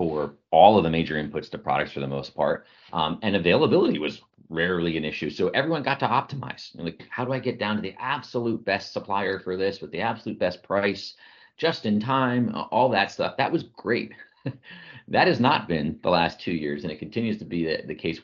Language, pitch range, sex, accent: English, 80-100 Hz, male, American